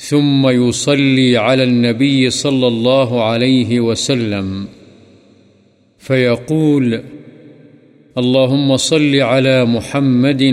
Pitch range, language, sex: 120-135 Hz, Urdu, male